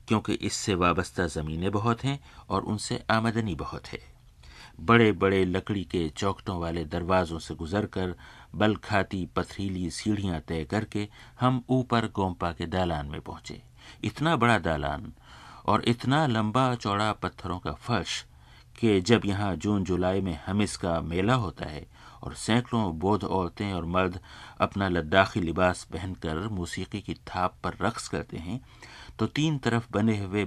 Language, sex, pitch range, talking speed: Hindi, male, 85-110 Hz, 150 wpm